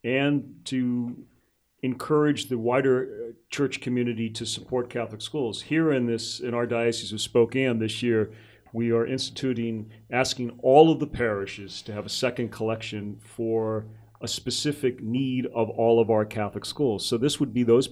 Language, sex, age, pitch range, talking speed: English, male, 40-59, 110-125 Hz, 165 wpm